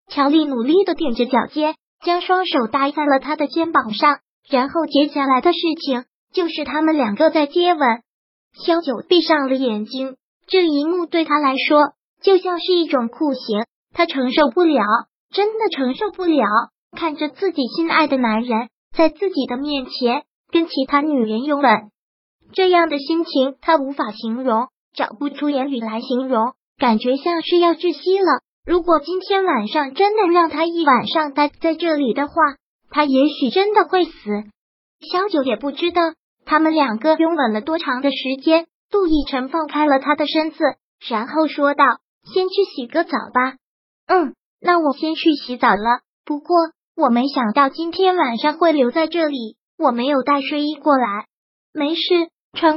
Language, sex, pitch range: Chinese, male, 265-330 Hz